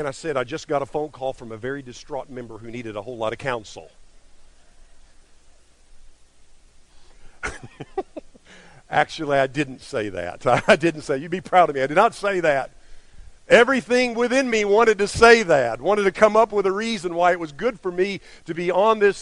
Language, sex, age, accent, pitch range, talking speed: English, male, 50-69, American, 155-235 Hz, 195 wpm